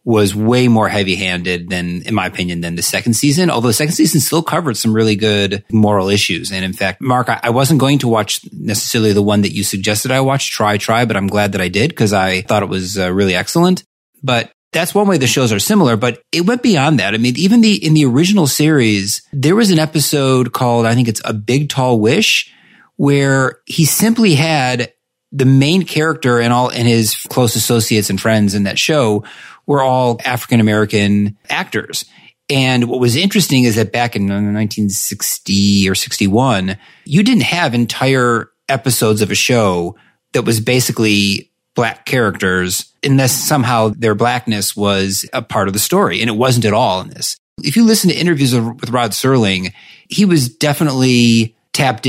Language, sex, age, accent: English, male, 30-49, American